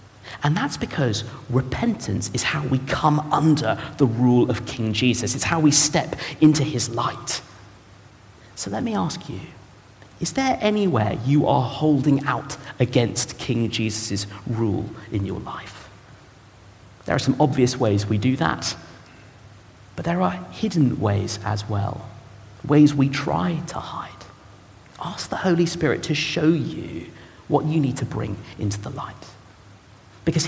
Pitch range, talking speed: 105-150 Hz, 150 wpm